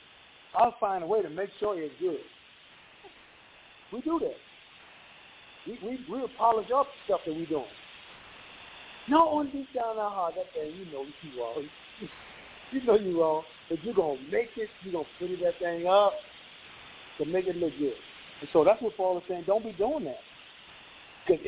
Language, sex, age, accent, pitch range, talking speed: English, male, 50-69, American, 175-270 Hz, 195 wpm